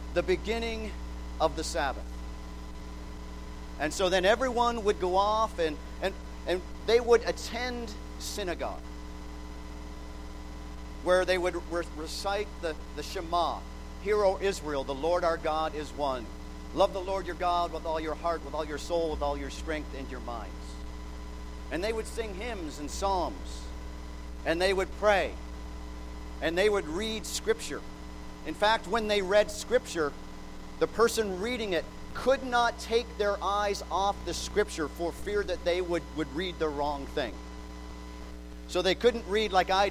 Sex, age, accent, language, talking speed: male, 50-69, American, English, 160 wpm